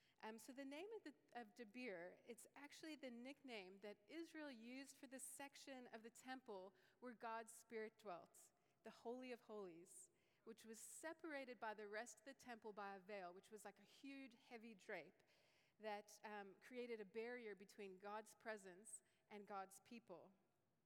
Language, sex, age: English, female, 30-49